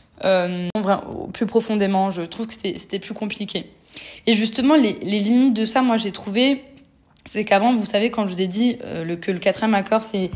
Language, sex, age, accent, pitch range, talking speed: French, female, 20-39, French, 190-235 Hz, 210 wpm